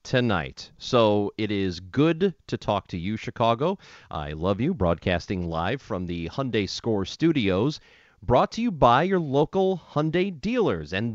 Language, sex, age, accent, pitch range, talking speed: English, male, 40-59, American, 95-135 Hz, 155 wpm